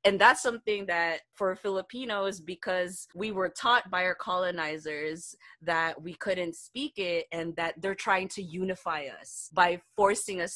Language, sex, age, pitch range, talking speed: English, female, 20-39, 160-190 Hz, 160 wpm